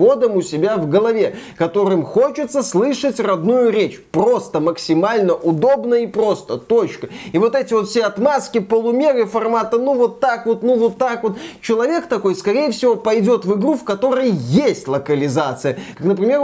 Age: 20-39